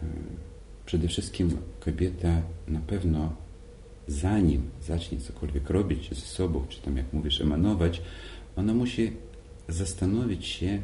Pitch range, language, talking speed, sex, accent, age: 80-95 Hz, Polish, 110 wpm, male, native, 40-59